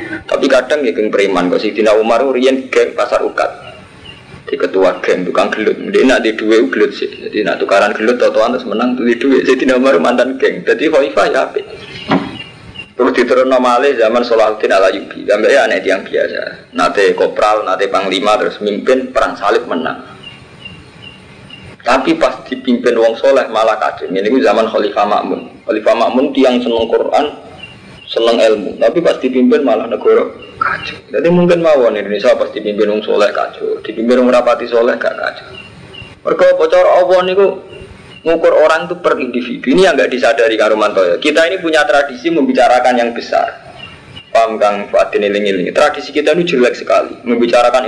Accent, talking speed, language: native, 160 wpm, Indonesian